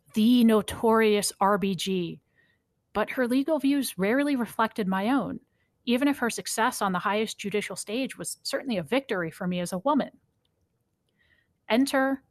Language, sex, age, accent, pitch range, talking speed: English, female, 30-49, American, 185-235 Hz, 145 wpm